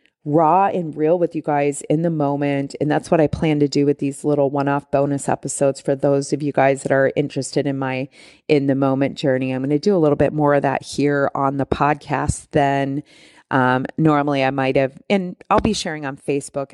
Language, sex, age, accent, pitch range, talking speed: English, female, 30-49, American, 135-155 Hz, 225 wpm